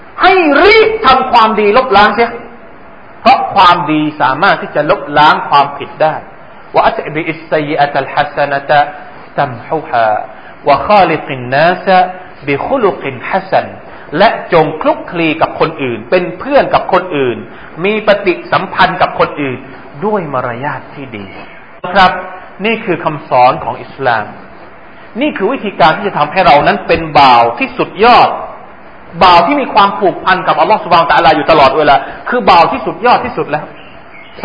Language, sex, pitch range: Thai, male, 155-240 Hz